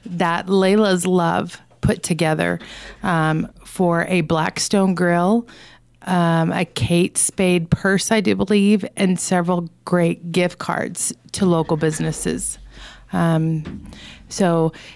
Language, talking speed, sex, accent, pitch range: English, 110 wpm, female, American, 165-190 Hz